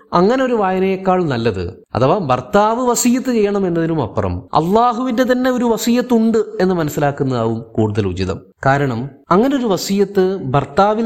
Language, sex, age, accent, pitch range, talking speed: Malayalam, male, 30-49, native, 120-185 Hz, 115 wpm